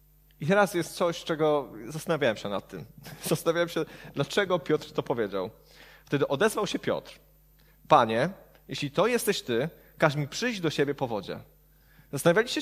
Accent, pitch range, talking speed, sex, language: native, 145-175 Hz, 150 wpm, male, Polish